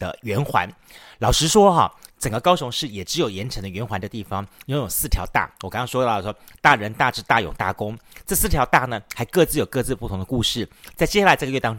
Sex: male